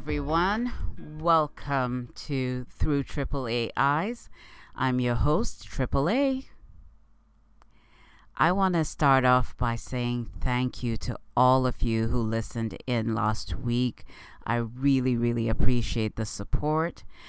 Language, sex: English, female